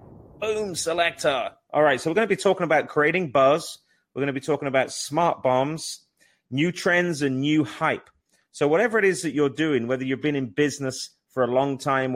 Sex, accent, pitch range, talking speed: male, British, 115-145 Hz, 205 wpm